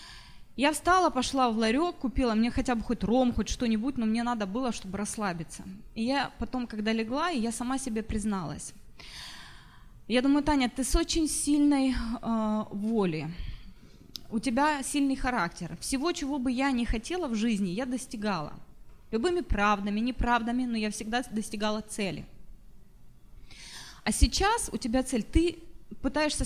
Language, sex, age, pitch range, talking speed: Russian, female, 20-39, 220-280 Hz, 150 wpm